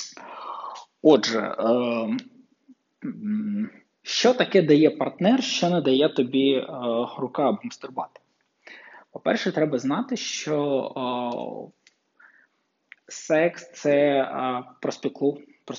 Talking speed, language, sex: 75 wpm, Ukrainian, male